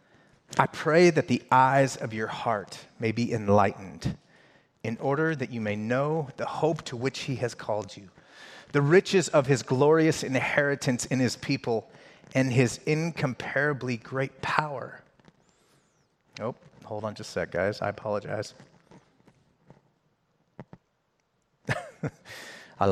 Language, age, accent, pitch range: English, 30-49, American, 115-145 Hz